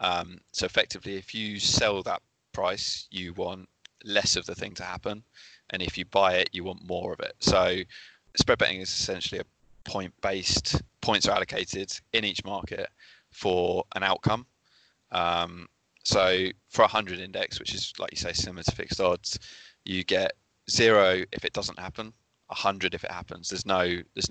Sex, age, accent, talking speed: male, 20-39, British, 180 wpm